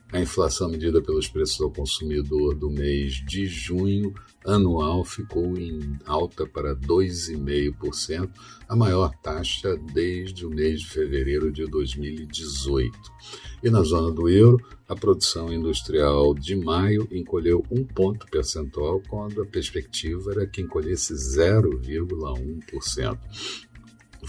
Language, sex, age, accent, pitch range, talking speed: Portuguese, male, 60-79, Brazilian, 75-100 Hz, 120 wpm